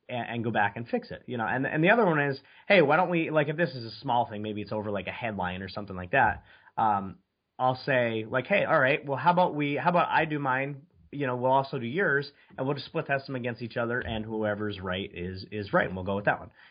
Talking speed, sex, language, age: 280 wpm, male, English, 30-49